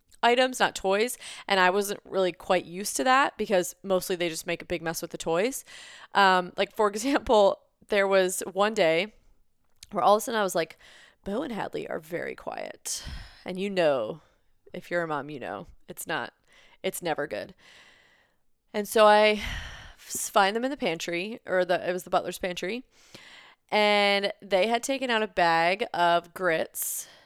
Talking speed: 180 wpm